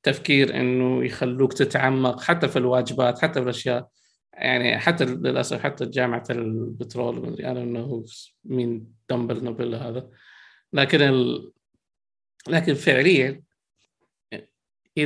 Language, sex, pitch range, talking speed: Arabic, male, 125-145 Hz, 100 wpm